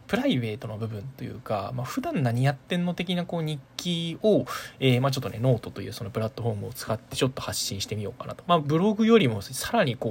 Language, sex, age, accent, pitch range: Japanese, male, 20-39, native, 115-145 Hz